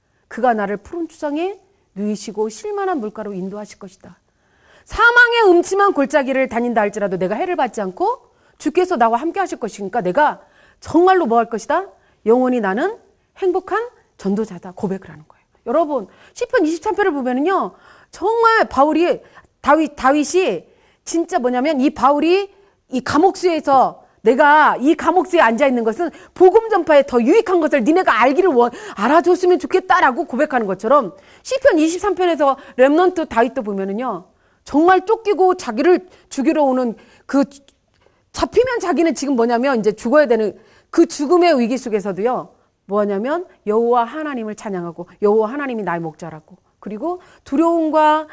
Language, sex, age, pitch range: Korean, female, 40-59, 230-355 Hz